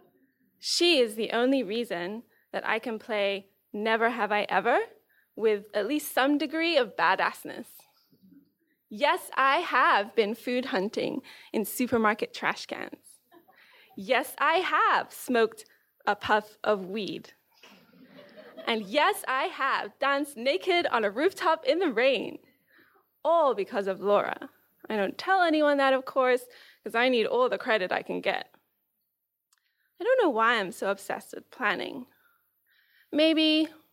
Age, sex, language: 20-39, female, English